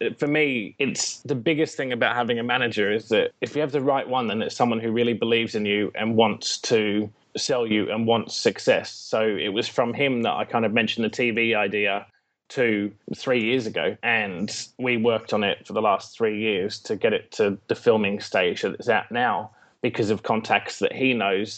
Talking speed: 215 wpm